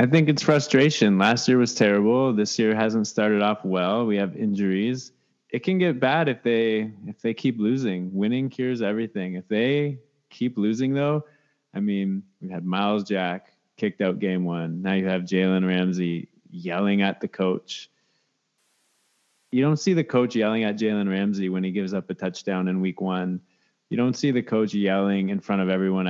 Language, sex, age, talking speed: English, male, 20-39, 190 wpm